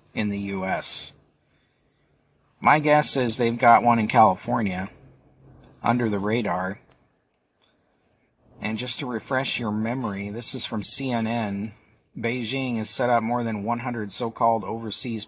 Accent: American